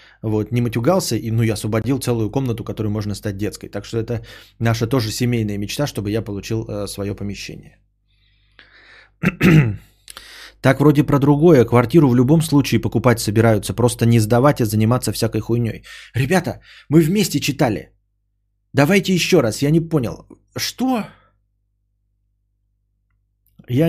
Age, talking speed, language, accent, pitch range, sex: 20-39, 140 wpm, Russian, native, 105-140 Hz, male